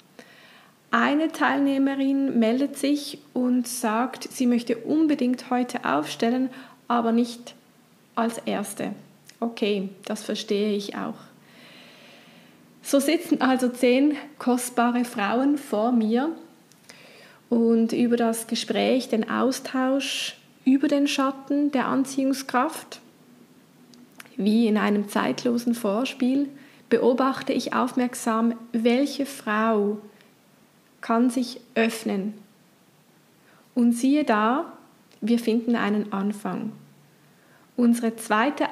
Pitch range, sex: 220-260 Hz, female